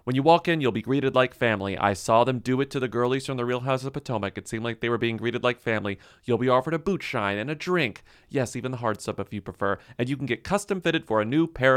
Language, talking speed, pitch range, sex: English, 305 wpm, 105-145 Hz, male